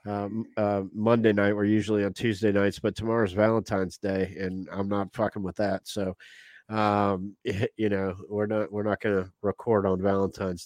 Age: 30-49